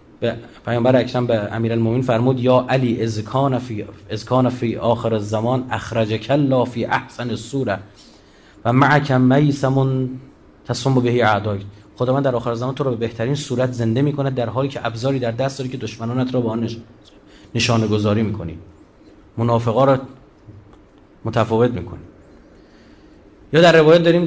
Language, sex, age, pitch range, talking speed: Persian, male, 30-49, 110-140 Hz, 150 wpm